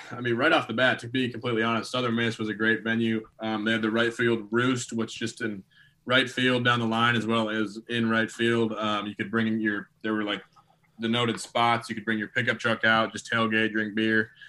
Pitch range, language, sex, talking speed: 105-120 Hz, English, male, 245 wpm